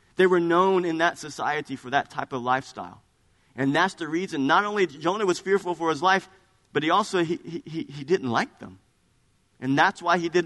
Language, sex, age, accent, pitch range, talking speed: English, male, 50-69, American, 120-185 Hz, 210 wpm